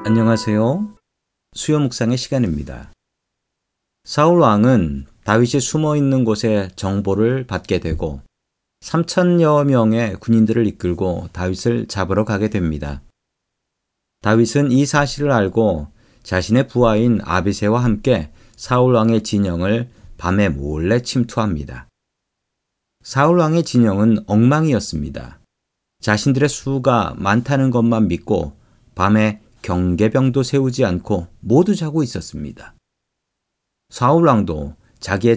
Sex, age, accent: male, 40-59, native